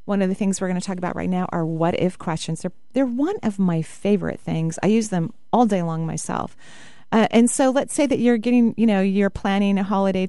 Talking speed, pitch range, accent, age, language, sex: 250 wpm, 175-230 Hz, American, 30-49, English, female